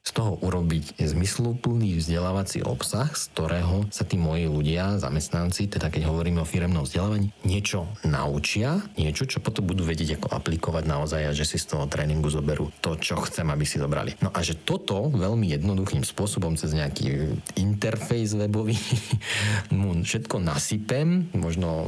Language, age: Slovak, 40-59